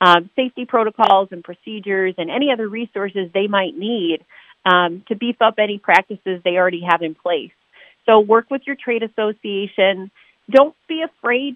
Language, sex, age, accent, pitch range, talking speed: English, female, 40-59, American, 170-215 Hz, 165 wpm